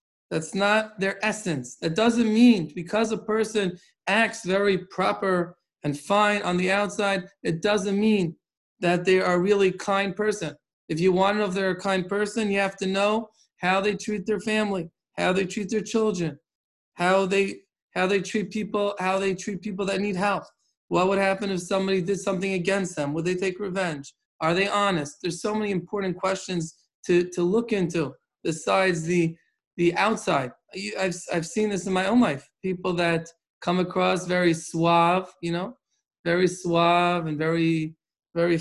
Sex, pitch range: male, 170-205 Hz